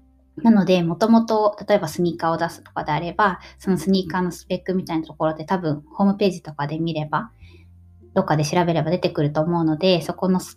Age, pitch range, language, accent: 20-39, 155-185 Hz, Japanese, native